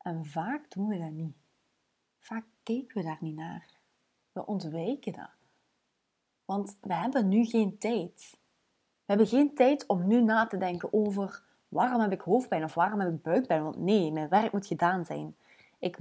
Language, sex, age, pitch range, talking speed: Dutch, female, 20-39, 170-240 Hz, 180 wpm